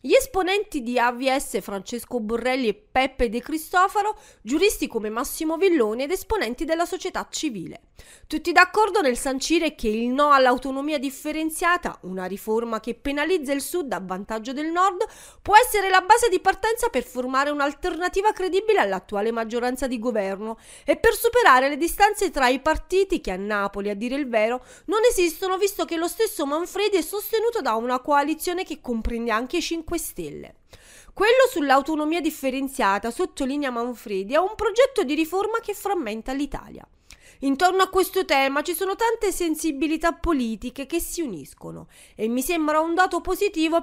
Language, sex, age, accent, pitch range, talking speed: Italian, female, 30-49, native, 250-370 Hz, 160 wpm